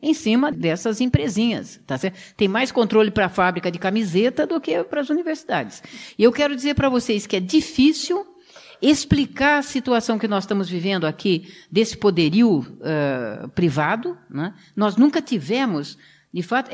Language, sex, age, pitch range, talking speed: Portuguese, female, 60-79, 195-285 Hz, 155 wpm